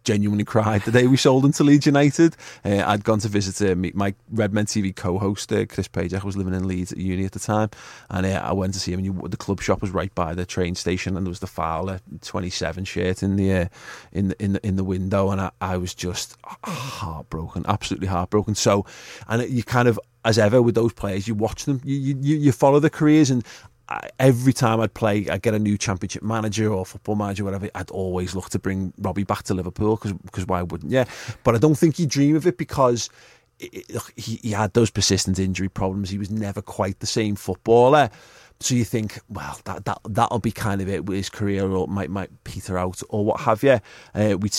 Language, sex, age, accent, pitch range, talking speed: English, male, 30-49, British, 95-115 Hz, 235 wpm